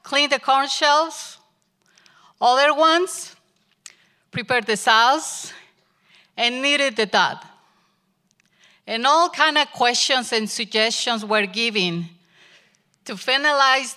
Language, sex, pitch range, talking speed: English, female, 190-260 Hz, 105 wpm